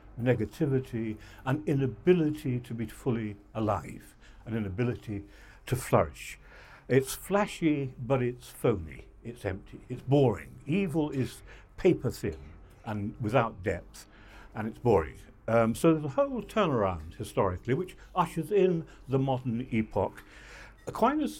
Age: 60-79